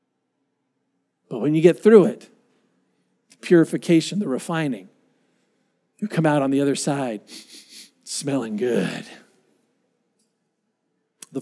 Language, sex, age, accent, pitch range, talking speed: English, male, 50-69, American, 170-245 Hz, 105 wpm